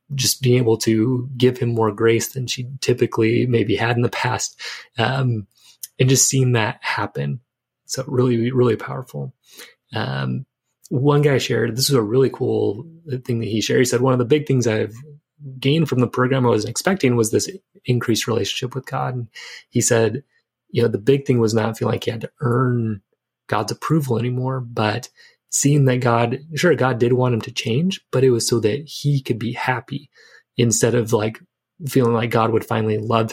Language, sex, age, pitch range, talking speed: English, male, 30-49, 115-130 Hz, 195 wpm